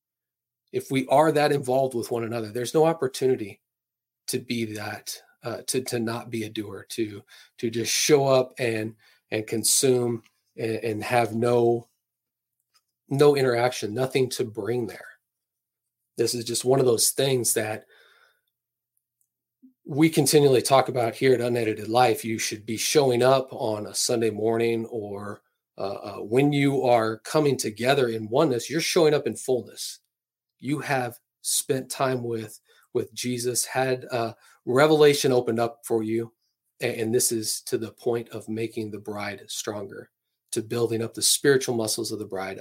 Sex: male